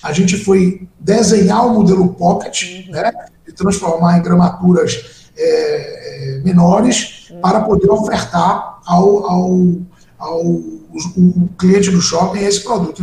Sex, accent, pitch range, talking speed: male, Brazilian, 180-230 Hz, 130 wpm